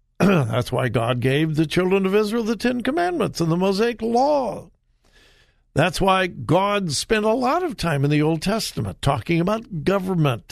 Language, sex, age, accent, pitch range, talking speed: English, male, 60-79, American, 140-215 Hz, 170 wpm